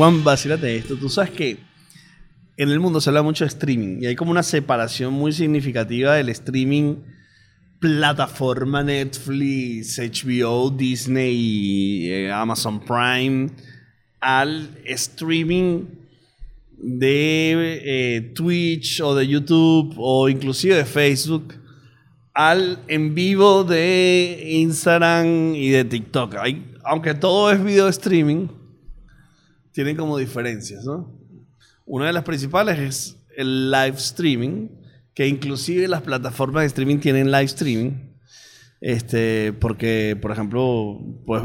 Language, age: Spanish, 30-49